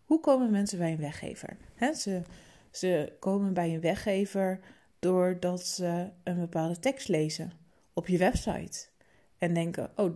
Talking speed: 140 wpm